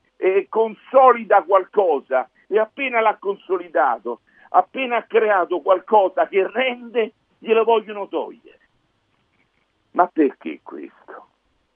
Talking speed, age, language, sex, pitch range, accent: 95 wpm, 50-69, Italian, male, 155-240 Hz, native